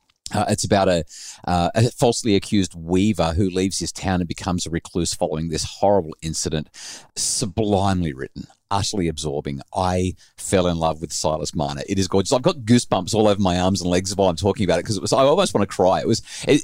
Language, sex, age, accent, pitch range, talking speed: English, male, 40-59, Australian, 90-115 Hz, 215 wpm